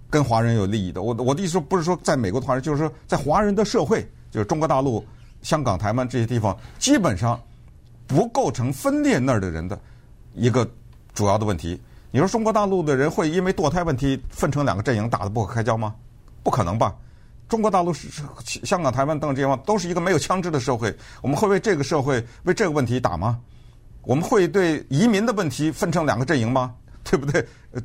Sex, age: male, 50-69